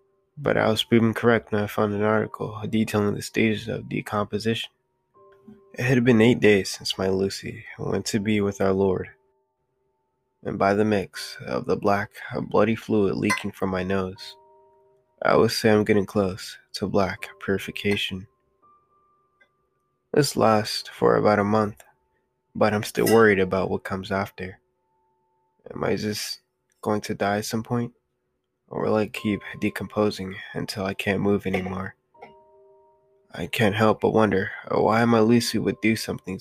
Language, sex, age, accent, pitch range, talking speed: English, male, 20-39, American, 100-120 Hz, 155 wpm